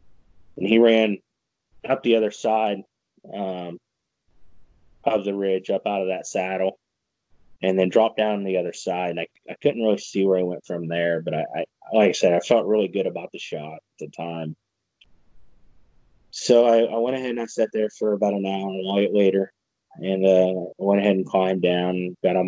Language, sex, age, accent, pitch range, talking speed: English, male, 20-39, American, 90-110 Hz, 205 wpm